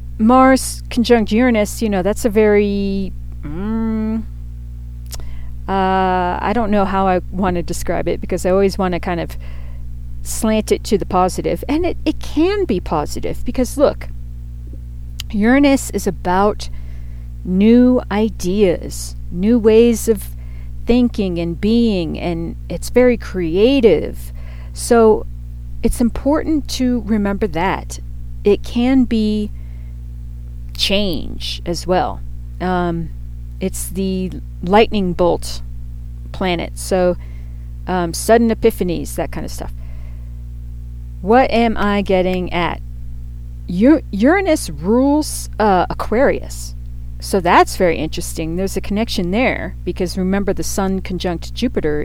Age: 40-59